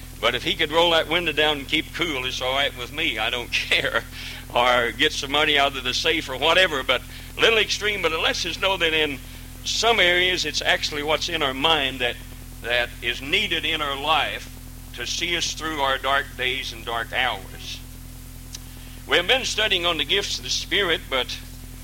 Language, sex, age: English, male, 60-79